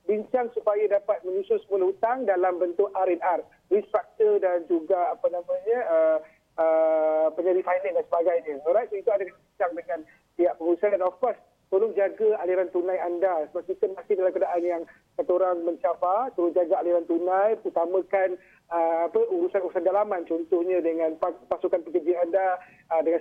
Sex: male